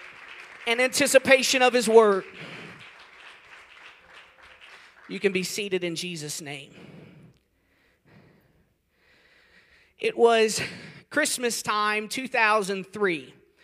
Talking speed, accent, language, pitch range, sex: 75 wpm, American, English, 175-220 Hz, male